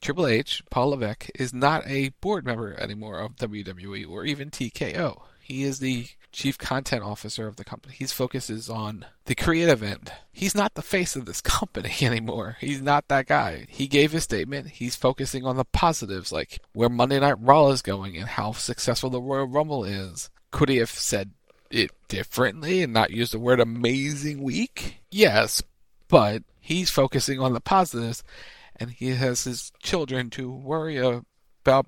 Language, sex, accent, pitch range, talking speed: English, male, American, 115-140 Hz, 175 wpm